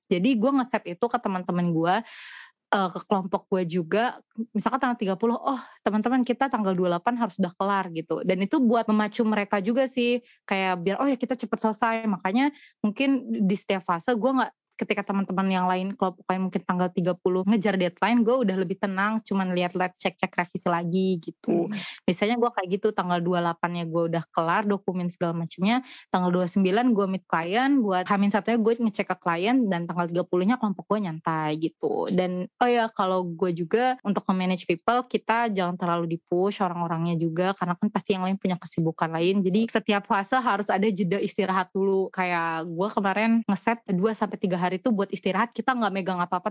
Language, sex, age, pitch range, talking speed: Indonesian, female, 20-39, 180-220 Hz, 180 wpm